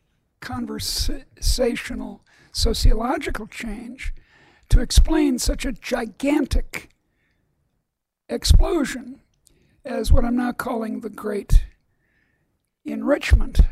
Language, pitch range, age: English, 240-275 Hz, 60-79